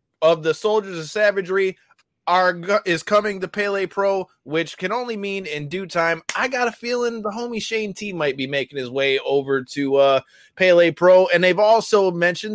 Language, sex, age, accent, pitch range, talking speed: English, male, 20-39, American, 155-205 Hz, 190 wpm